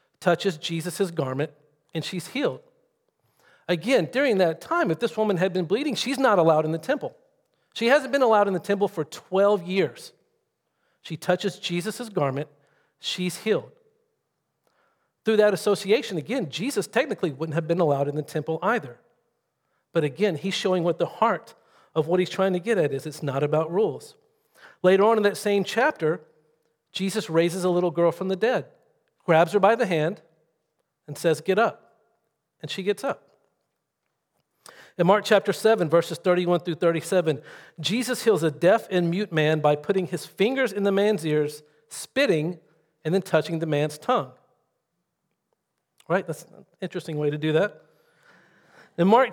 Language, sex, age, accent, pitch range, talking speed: English, male, 50-69, American, 155-205 Hz, 170 wpm